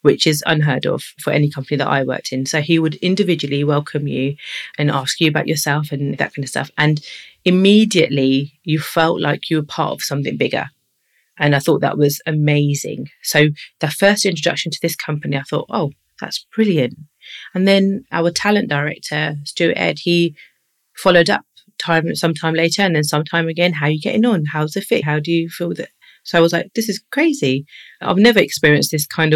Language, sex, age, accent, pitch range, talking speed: English, female, 30-49, British, 145-180 Hz, 200 wpm